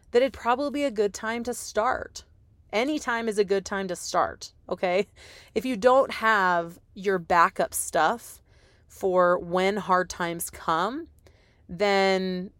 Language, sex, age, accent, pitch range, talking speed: English, female, 30-49, American, 180-220 Hz, 150 wpm